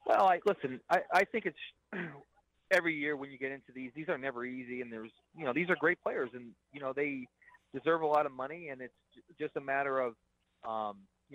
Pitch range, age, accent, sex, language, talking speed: 115-140 Hz, 30-49, American, male, English, 225 wpm